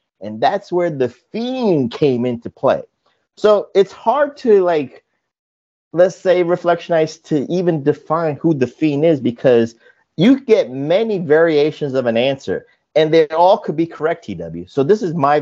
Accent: American